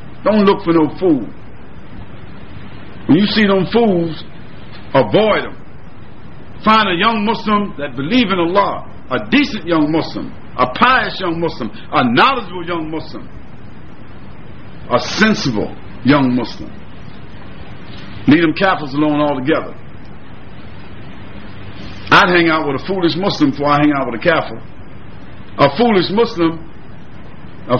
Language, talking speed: English, 125 wpm